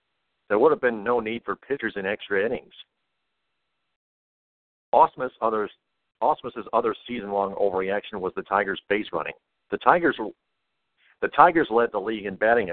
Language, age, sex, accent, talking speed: English, 50-69, male, American, 135 wpm